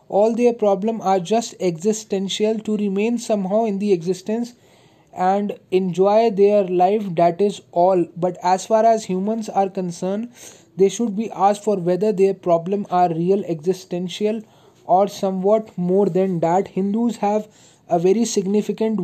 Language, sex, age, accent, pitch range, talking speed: Hindi, male, 20-39, native, 180-210 Hz, 150 wpm